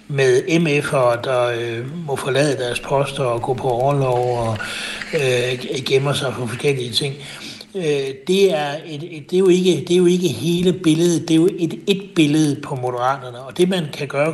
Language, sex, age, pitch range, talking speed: Danish, male, 60-79, 130-170 Hz, 195 wpm